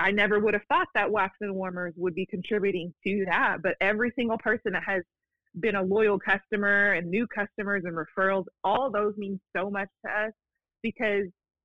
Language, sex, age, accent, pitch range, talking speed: English, female, 20-39, American, 190-230 Hz, 190 wpm